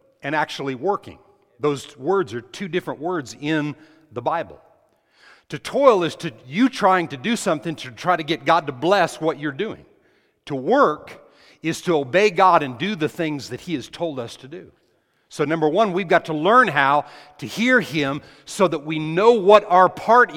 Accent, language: American, English